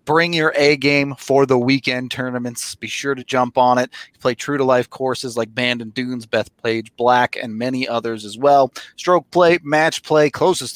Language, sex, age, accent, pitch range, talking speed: English, male, 30-49, American, 125-145 Hz, 180 wpm